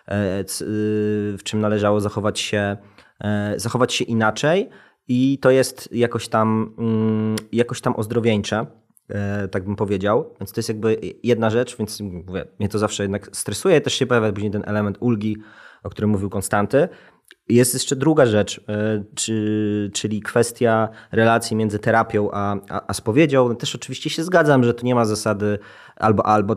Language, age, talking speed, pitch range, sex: Polish, 20-39, 140 wpm, 105-120 Hz, male